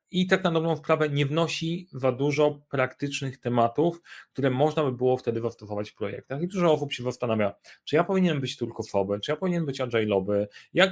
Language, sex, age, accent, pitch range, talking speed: Polish, male, 30-49, native, 115-145 Hz, 205 wpm